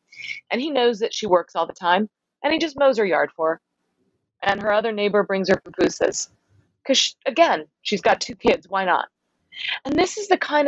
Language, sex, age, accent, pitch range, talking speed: English, female, 30-49, American, 175-245 Hz, 215 wpm